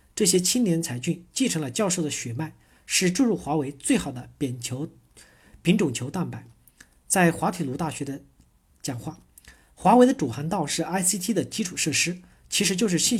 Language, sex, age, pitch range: Chinese, male, 50-69, 140-205 Hz